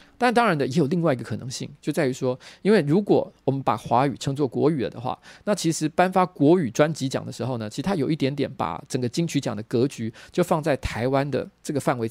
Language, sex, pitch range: Chinese, male, 125-155 Hz